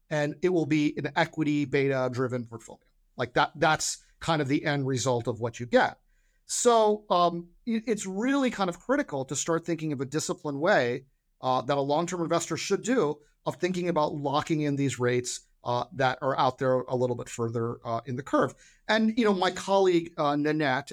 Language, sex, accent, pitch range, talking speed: English, male, American, 125-165 Hz, 195 wpm